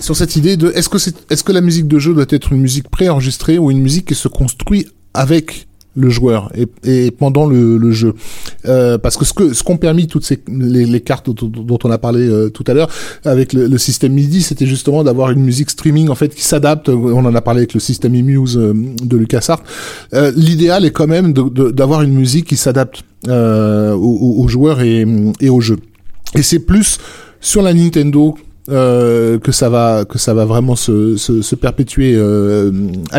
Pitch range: 115-150 Hz